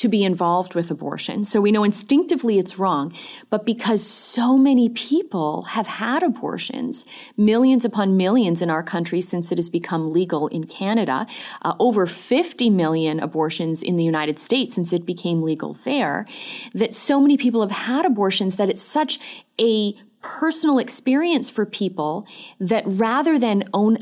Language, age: English, 30-49